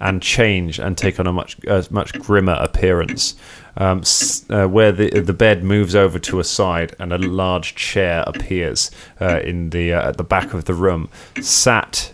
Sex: male